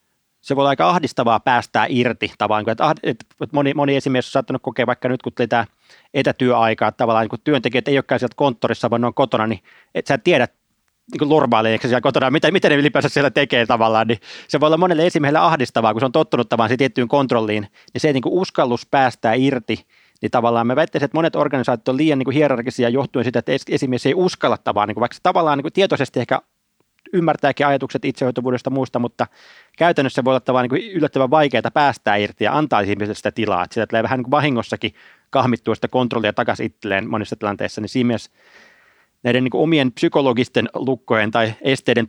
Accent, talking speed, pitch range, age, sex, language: native, 180 wpm, 110-140 Hz, 30-49, male, Finnish